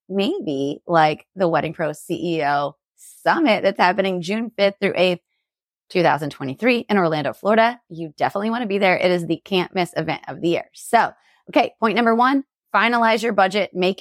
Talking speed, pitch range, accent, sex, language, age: 175 wpm, 180-225 Hz, American, female, English, 20-39